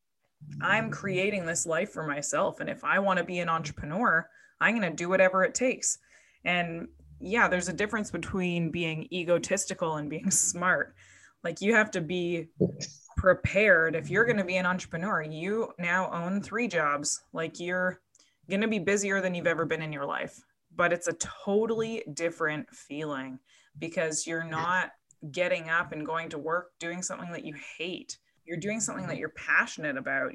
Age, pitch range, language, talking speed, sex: 20-39, 165-220 Hz, English, 180 wpm, female